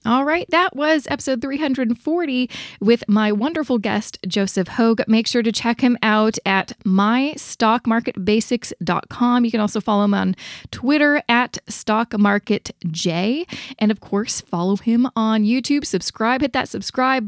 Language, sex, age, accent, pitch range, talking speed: English, female, 20-39, American, 205-275 Hz, 140 wpm